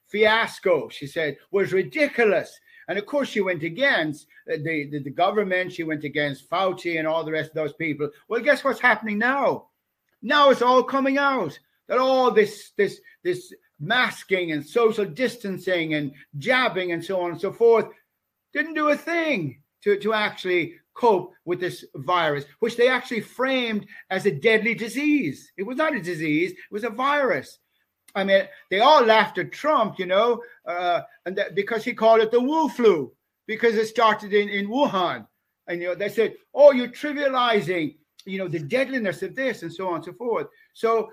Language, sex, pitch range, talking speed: English, male, 180-265 Hz, 185 wpm